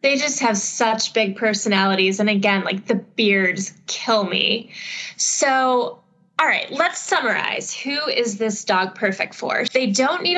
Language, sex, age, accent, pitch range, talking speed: English, female, 10-29, American, 200-235 Hz, 155 wpm